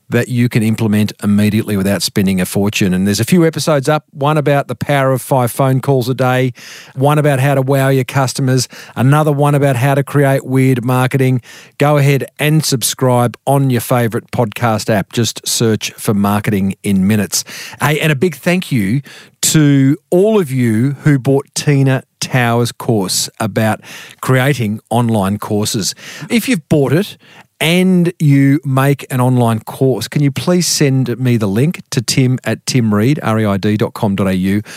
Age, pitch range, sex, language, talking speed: 50-69, 110-150 Hz, male, English, 160 wpm